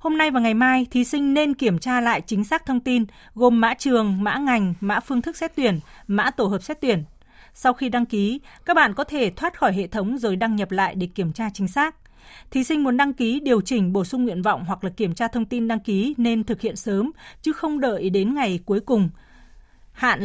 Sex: female